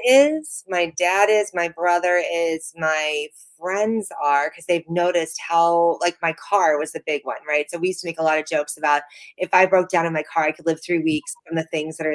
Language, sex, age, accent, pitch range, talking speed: English, female, 30-49, American, 160-205 Hz, 240 wpm